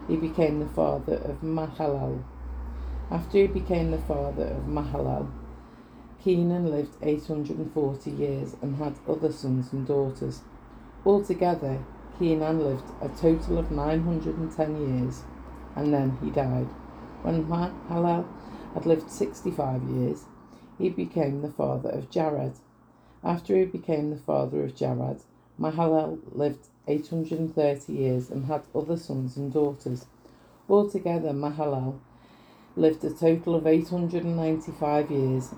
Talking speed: 120 wpm